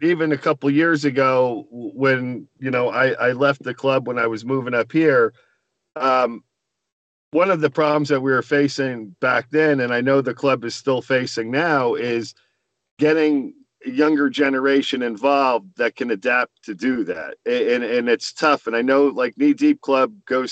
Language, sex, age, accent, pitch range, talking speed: English, male, 40-59, American, 125-150 Hz, 185 wpm